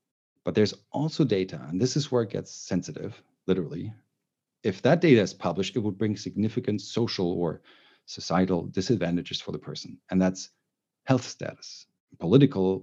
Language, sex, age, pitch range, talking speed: English, male, 40-59, 95-145 Hz, 155 wpm